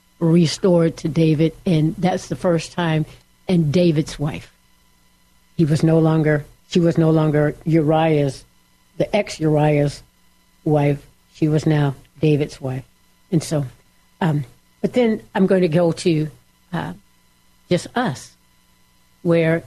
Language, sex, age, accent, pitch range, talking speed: English, female, 60-79, American, 125-165 Hz, 130 wpm